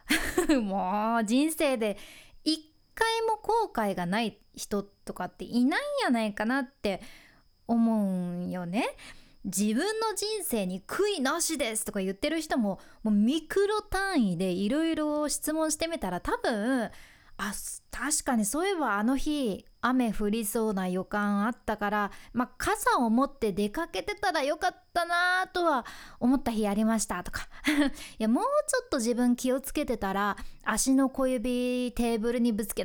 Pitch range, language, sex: 225-330 Hz, Japanese, female